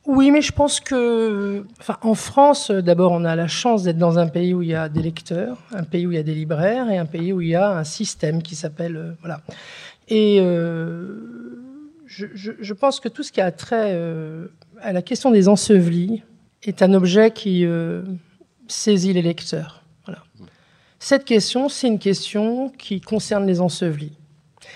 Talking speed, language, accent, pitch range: 195 wpm, French, French, 175-235 Hz